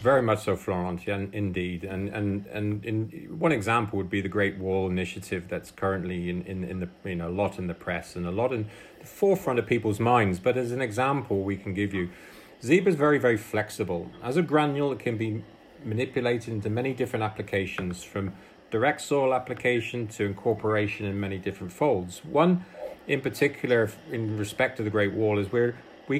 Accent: British